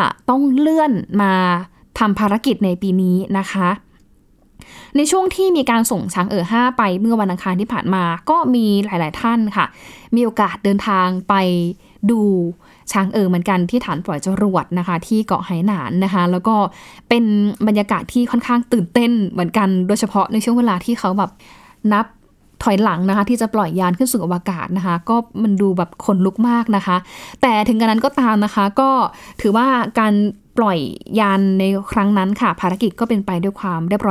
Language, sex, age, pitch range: Thai, female, 10-29, 185-230 Hz